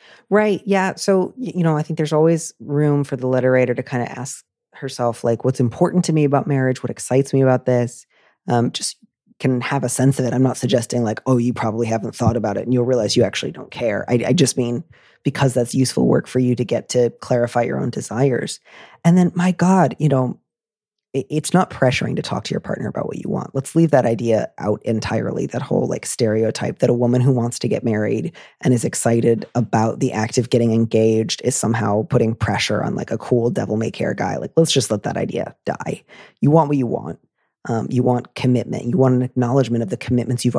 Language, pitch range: English, 120-135 Hz